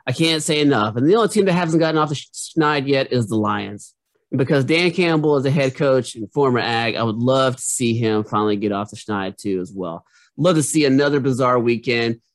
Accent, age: American, 30-49